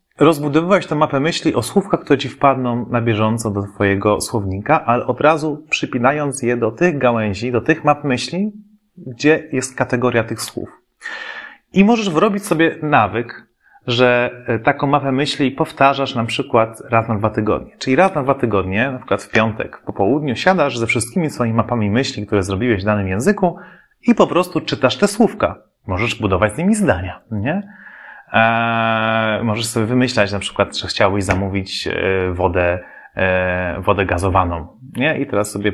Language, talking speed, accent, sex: Polish, 165 wpm, native, male